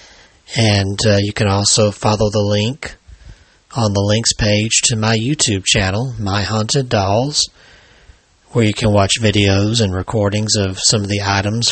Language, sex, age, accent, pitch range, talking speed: English, male, 40-59, American, 100-115 Hz, 160 wpm